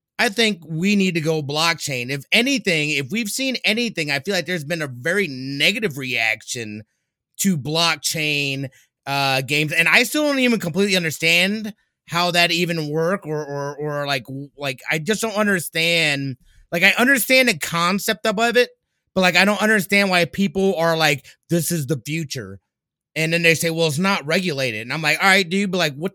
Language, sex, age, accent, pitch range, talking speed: English, male, 30-49, American, 140-175 Hz, 190 wpm